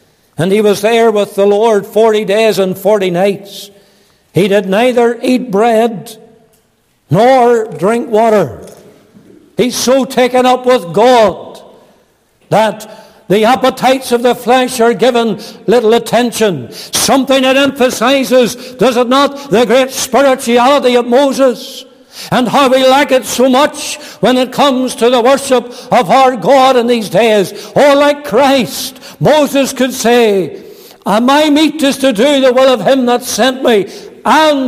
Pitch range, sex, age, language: 180-255 Hz, male, 60-79, English